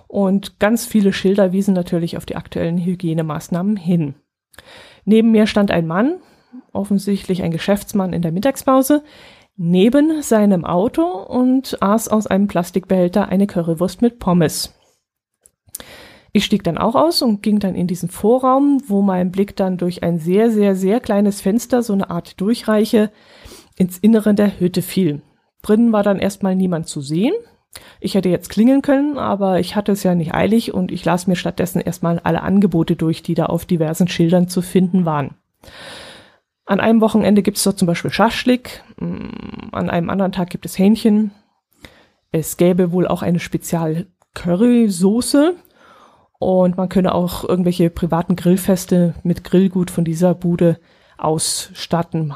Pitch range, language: 175-215 Hz, German